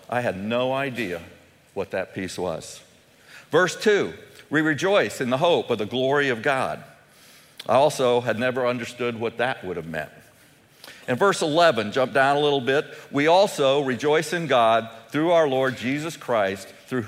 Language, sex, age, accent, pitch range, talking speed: English, male, 50-69, American, 115-160 Hz, 170 wpm